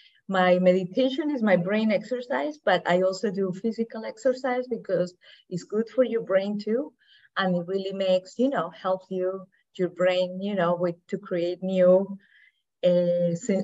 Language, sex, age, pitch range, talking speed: English, female, 20-39, 180-205 Hz, 160 wpm